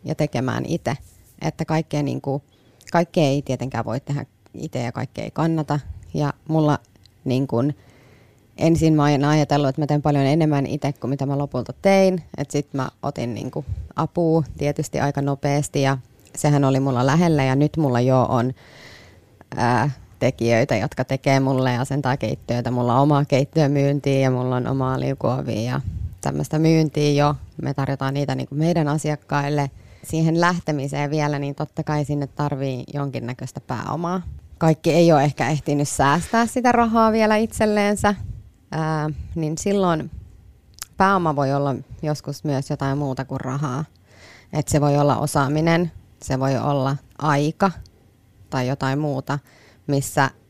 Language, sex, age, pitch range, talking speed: Finnish, female, 30-49, 130-150 Hz, 150 wpm